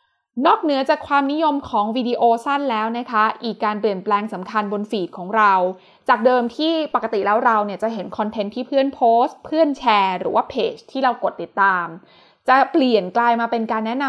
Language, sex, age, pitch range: Thai, female, 20-39, 205-265 Hz